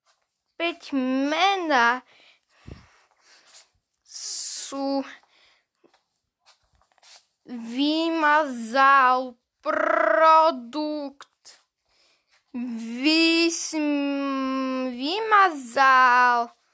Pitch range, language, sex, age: 245-295 Hz, Slovak, female, 10-29